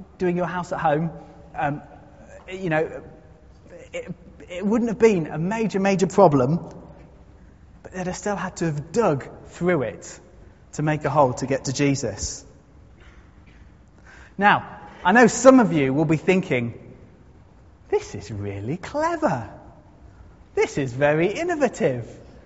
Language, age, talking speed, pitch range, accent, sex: English, 20-39, 140 wpm, 170-260 Hz, British, male